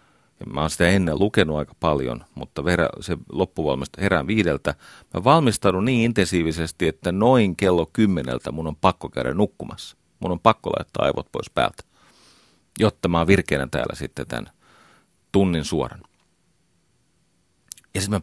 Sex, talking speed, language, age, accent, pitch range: male, 150 wpm, Finnish, 40-59, native, 85-110 Hz